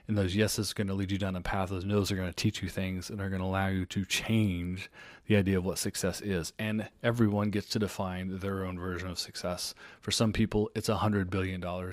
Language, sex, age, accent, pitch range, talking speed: English, male, 30-49, American, 95-110 Hz, 245 wpm